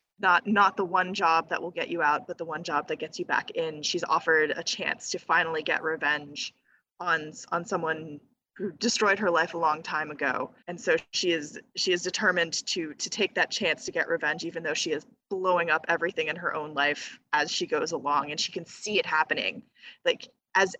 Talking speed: 220 wpm